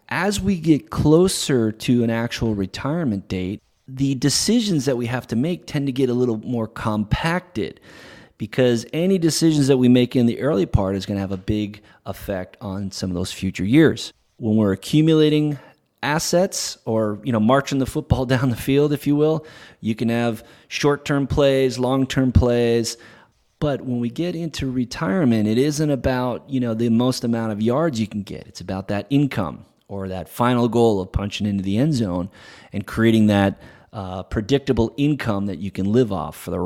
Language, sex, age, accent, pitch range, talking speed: English, male, 30-49, American, 105-140 Hz, 185 wpm